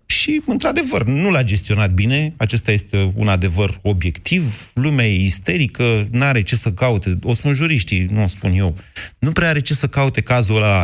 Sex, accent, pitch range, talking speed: male, native, 100-145 Hz, 190 wpm